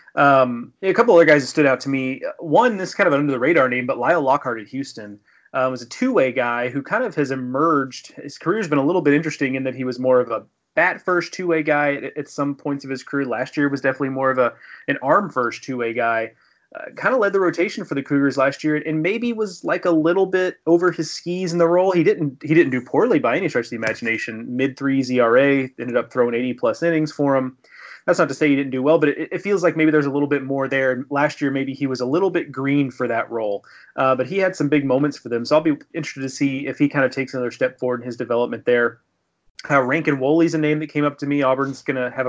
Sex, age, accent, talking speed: male, 30-49, American, 270 wpm